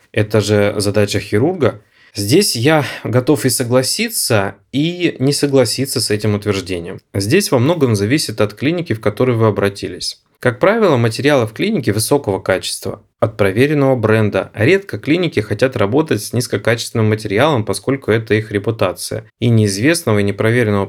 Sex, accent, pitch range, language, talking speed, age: male, native, 105-135 Hz, Russian, 145 wpm, 20-39